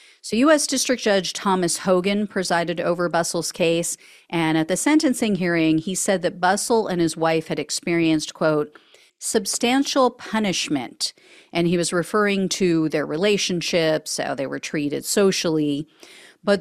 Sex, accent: female, American